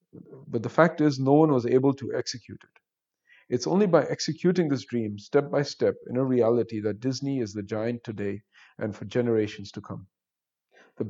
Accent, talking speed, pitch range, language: Indian, 190 wpm, 115-140 Hz, English